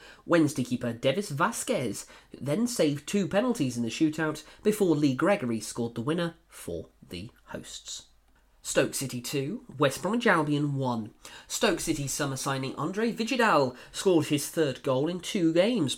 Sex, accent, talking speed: male, British, 150 wpm